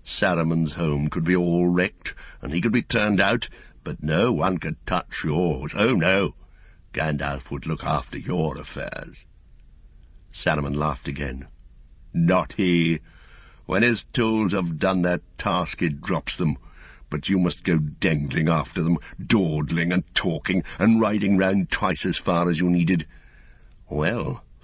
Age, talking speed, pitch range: 60-79, 150 wpm, 75-85 Hz